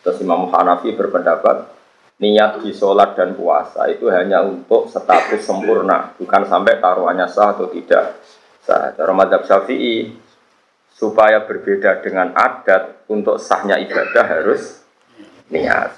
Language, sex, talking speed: Indonesian, male, 120 wpm